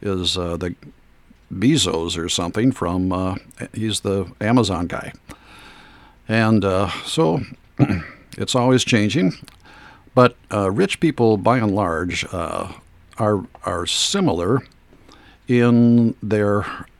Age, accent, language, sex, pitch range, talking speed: 60-79, American, English, male, 85-110 Hz, 110 wpm